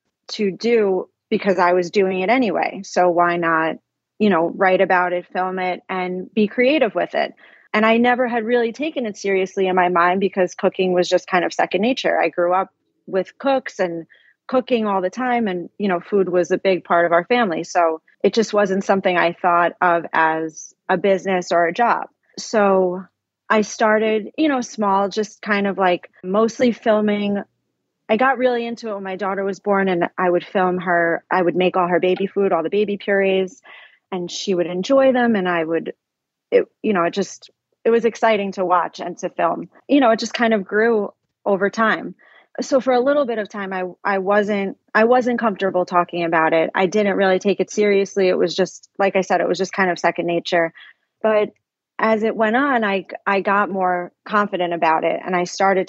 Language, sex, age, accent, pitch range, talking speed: English, female, 30-49, American, 180-220 Hz, 210 wpm